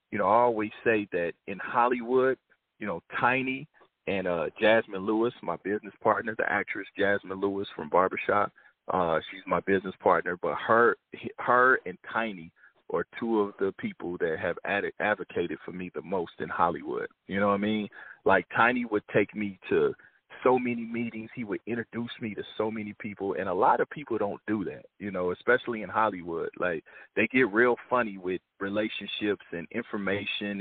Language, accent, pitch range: English, American, 100-120 Hz